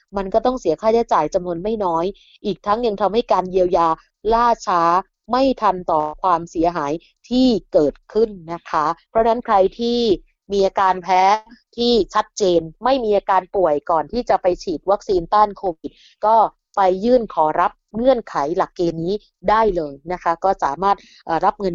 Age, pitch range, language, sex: 20-39, 180-230 Hz, Thai, female